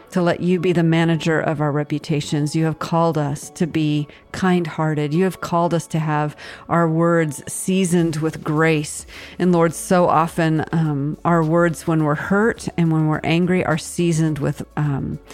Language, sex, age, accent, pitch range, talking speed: English, female, 40-59, American, 155-175 Hz, 170 wpm